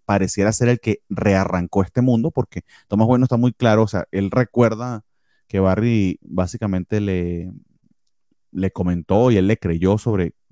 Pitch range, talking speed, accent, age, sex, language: 90-110 Hz, 160 wpm, Venezuelan, 30-49, male, Spanish